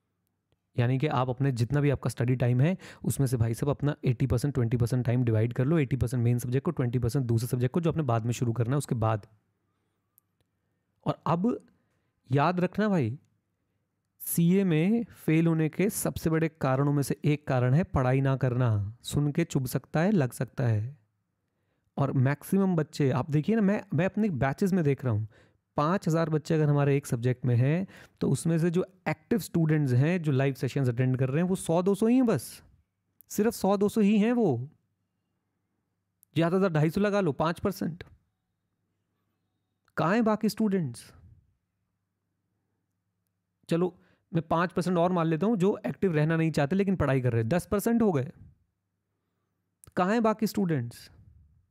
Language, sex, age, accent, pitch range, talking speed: Hindi, male, 30-49, native, 105-165 Hz, 165 wpm